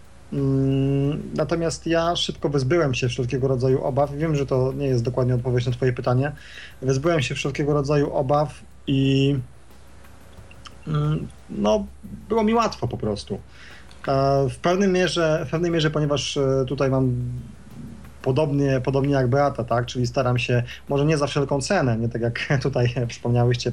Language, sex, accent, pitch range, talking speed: Polish, male, native, 125-145 Hz, 145 wpm